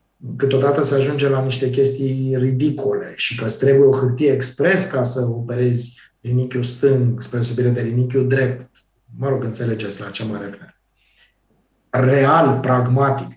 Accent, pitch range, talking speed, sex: native, 120-135 Hz, 155 wpm, male